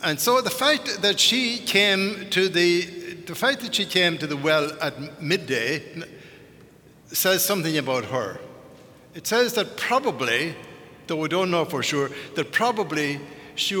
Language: English